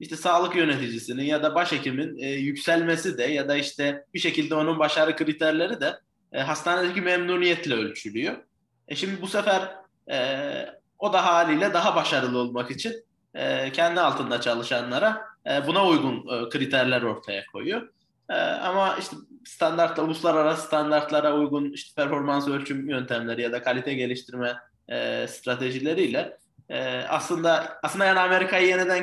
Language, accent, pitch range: Turkish, native, 130-175 Hz